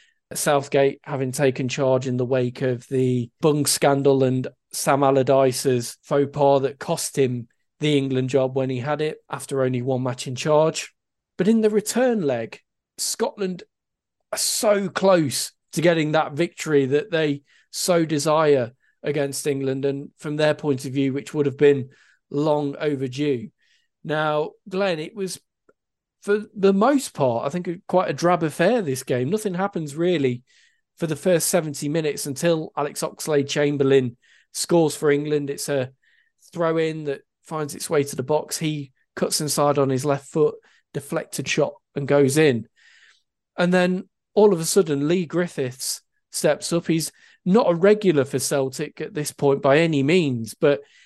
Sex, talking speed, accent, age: male, 160 wpm, British, 40-59